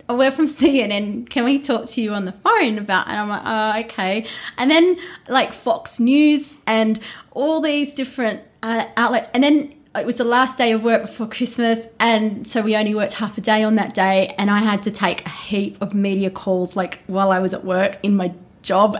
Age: 20-39